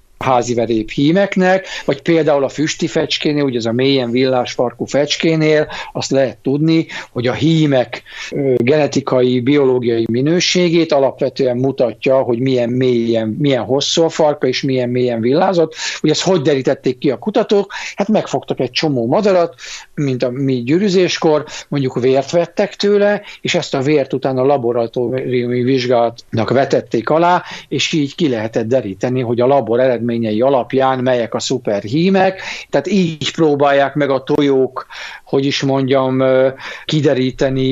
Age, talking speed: 60-79, 135 wpm